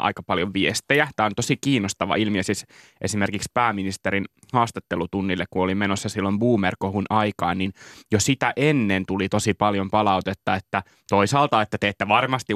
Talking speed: 160 wpm